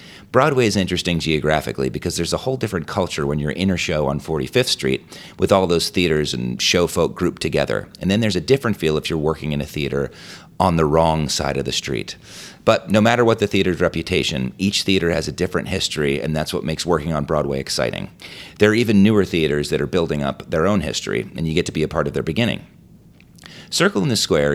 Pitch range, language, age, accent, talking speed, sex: 75-100 Hz, English, 30-49, American, 225 wpm, male